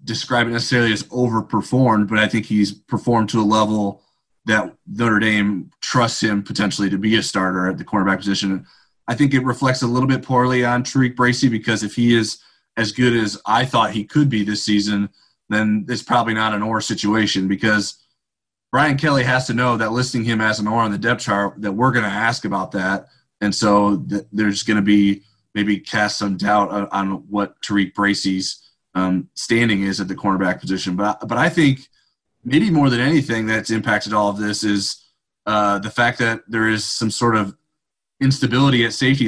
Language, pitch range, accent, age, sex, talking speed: English, 100-115 Hz, American, 30-49, male, 200 wpm